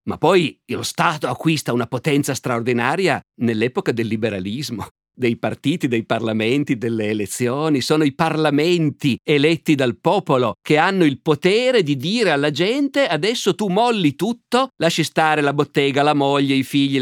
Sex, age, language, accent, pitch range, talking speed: male, 50-69, Italian, native, 115-155 Hz, 150 wpm